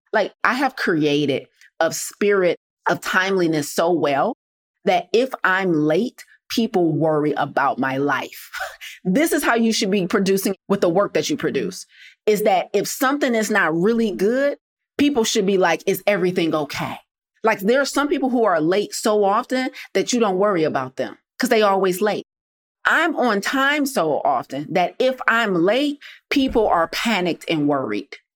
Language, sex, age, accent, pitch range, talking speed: English, female, 30-49, American, 185-245 Hz, 170 wpm